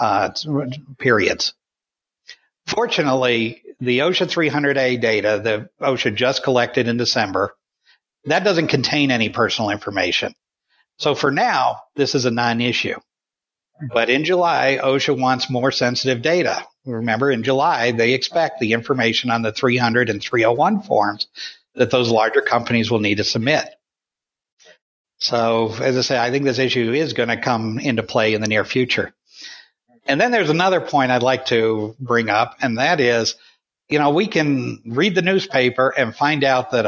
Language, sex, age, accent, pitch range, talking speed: English, male, 60-79, American, 115-145 Hz, 155 wpm